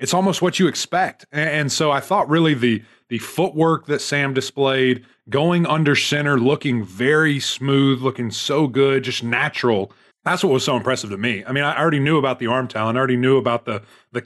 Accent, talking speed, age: American, 205 wpm, 30-49